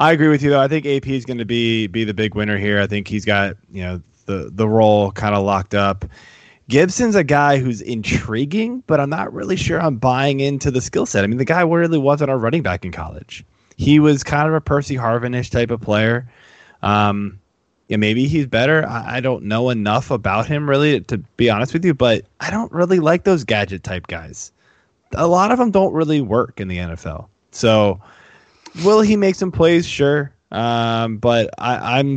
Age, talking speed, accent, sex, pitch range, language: 20-39, 215 wpm, American, male, 105-145 Hz, English